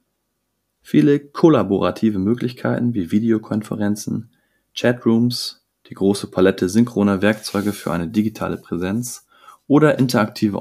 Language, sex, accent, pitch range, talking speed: German, male, German, 95-120 Hz, 95 wpm